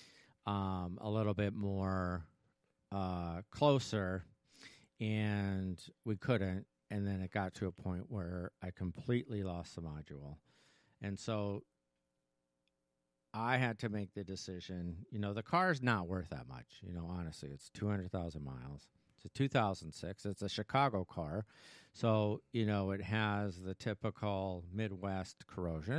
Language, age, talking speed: English, 50-69, 140 wpm